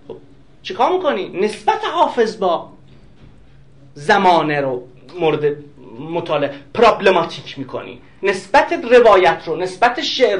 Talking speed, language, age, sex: 90 wpm, Persian, 40-59, male